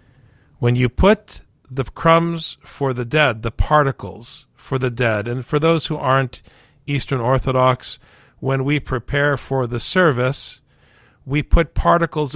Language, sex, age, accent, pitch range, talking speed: English, male, 50-69, American, 125-150 Hz, 140 wpm